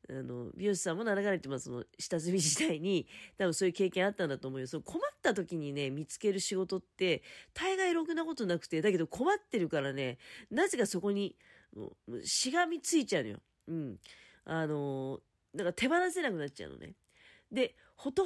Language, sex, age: Japanese, female, 40-59